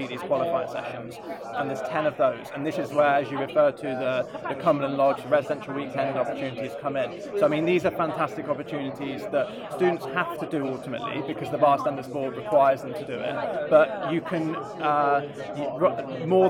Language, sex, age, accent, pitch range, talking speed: English, male, 20-39, British, 140-165 Hz, 195 wpm